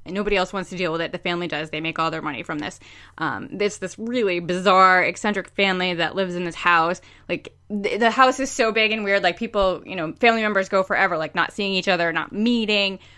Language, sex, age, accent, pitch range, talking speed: English, female, 20-39, American, 165-210 Hz, 240 wpm